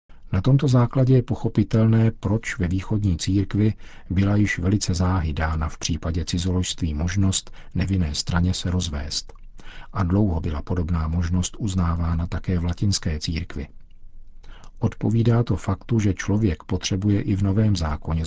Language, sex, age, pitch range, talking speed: Czech, male, 50-69, 85-105 Hz, 135 wpm